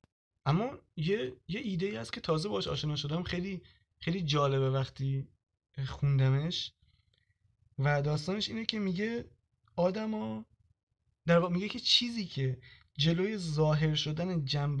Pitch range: 140-185 Hz